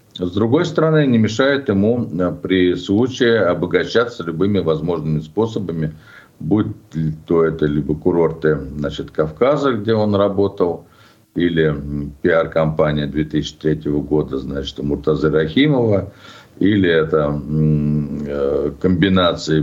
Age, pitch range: 50-69, 75-100 Hz